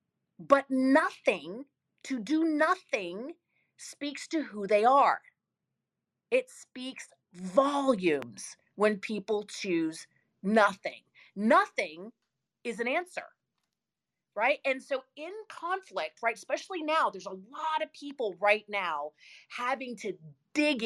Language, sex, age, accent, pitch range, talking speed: English, female, 30-49, American, 195-305 Hz, 110 wpm